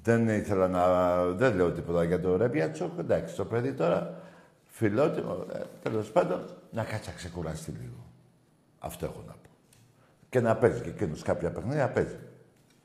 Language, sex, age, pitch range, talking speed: Greek, male, 60-79, 100-145 Hz, 160 wpm